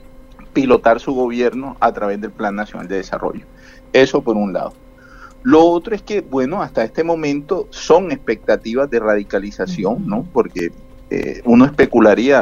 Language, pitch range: Spanish, 105-130 Hz